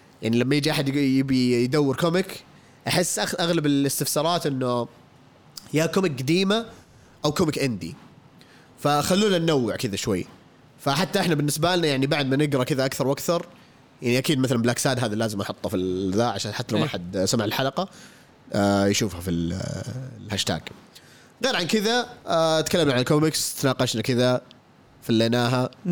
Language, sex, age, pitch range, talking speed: Arabic, male, 20-39, 110-145 Hz, 140 wpm